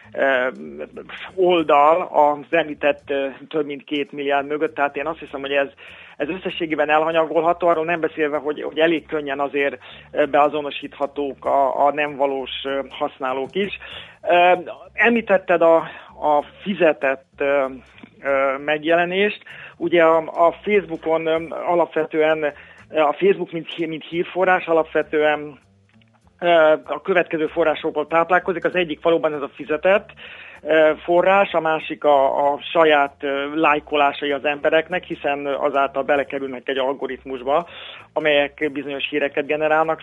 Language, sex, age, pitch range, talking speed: Hungarian, male, 40-59, 145-170 Hz, 115 wpm